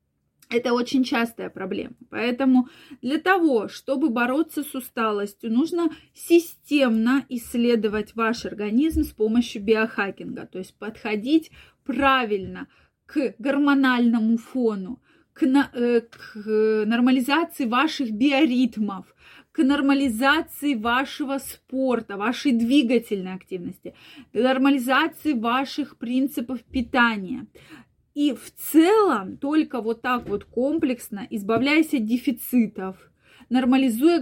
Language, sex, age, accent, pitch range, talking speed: Russian, female, 20-39, native, 220-275 Hz, 95 wpm